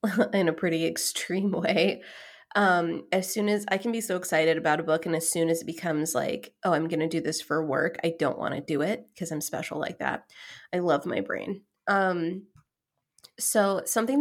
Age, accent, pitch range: 20-39, American, 170-220 Hz